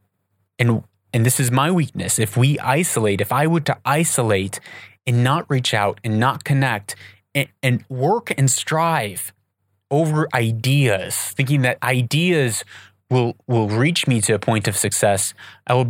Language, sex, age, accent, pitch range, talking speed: English, male, 30-49, American, 100-125 Hz, 160 wpm